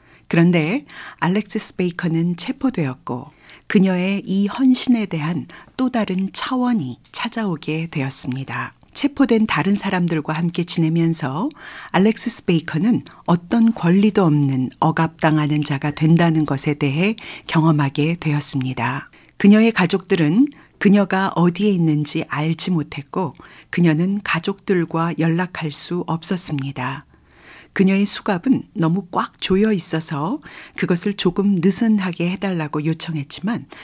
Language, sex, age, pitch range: Korean, female, 40-59, 155-205 Hz